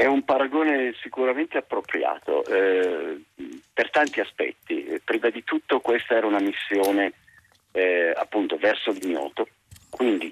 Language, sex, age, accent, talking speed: Italian, male, 50-69, native, 120 wpm